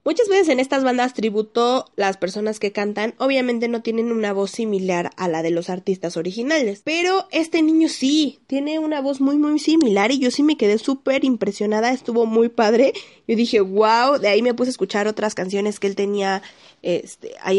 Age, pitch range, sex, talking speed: 20-39, 205-255 Hz, female, 195 wpm